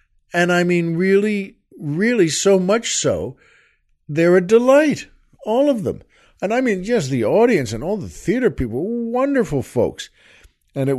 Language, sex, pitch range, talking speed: English, male, 125-190 Hz, 160 wpm